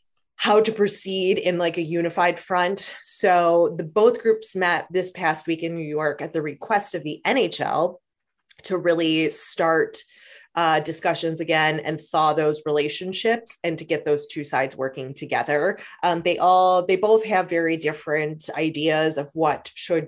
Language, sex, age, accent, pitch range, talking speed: English, female, 20-39, American, 155-190 Hz, 165 wpm